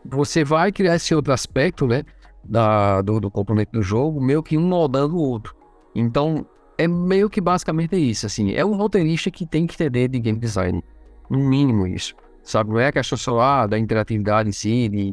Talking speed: 220 wpm